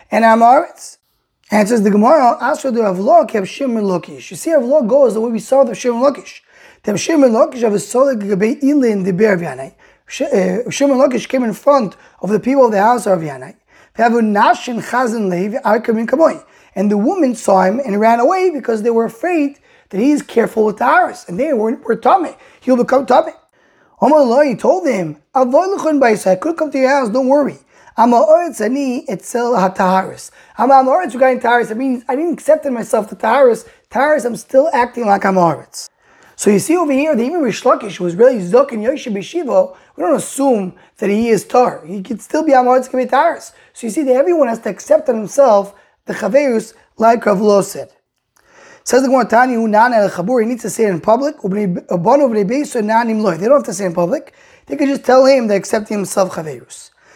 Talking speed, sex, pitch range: 195 wpm, male, 210-275 Hz